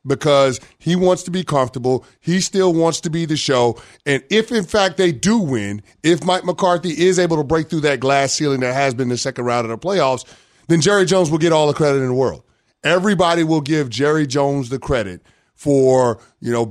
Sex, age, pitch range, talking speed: male, 30-49, 130-175 Hz, 220 wpm